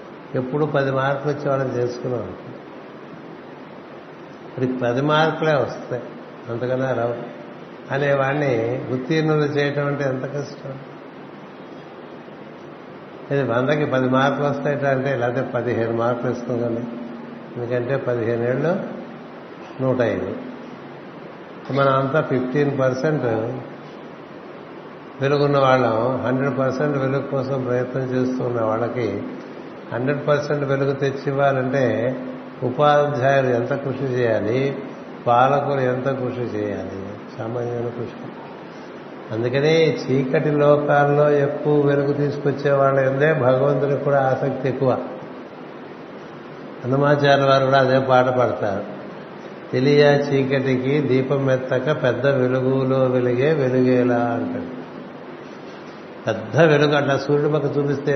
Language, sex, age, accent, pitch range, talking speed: Telugu, male, 60-79, native, 125-145 Hz, 90 wpm